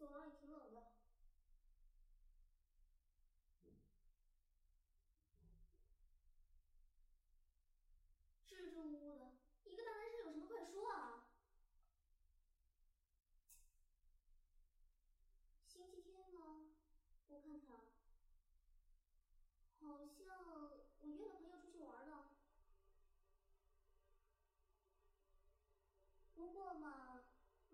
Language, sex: Chinese, male